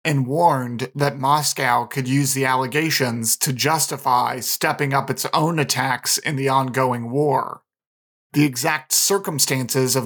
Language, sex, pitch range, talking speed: English, male, 130-150 Hz, 135 wpm